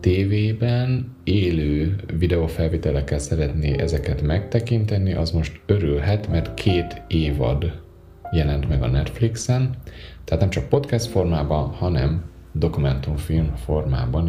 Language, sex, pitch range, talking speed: Hungarian, male, 80-100 Hz, 100 wpm